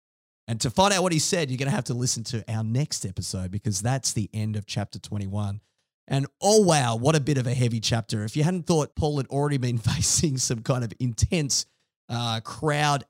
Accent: Australian